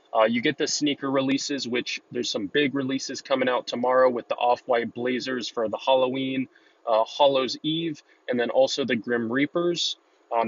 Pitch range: 120-145 Hz